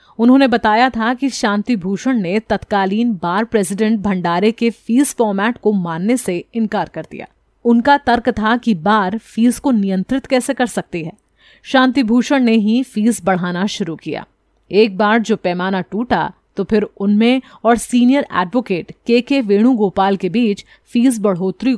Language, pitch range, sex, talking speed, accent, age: Hindi, 195-245 Hz, female, 160 wpm, native, 30-49